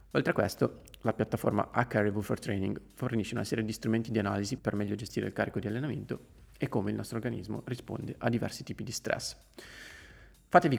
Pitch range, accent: 105-120 Hz, native